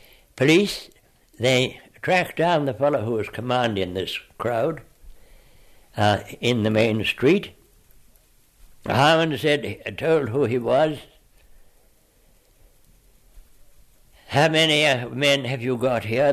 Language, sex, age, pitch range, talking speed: English, male, 60-79, 100-140 Hz, 105 wpm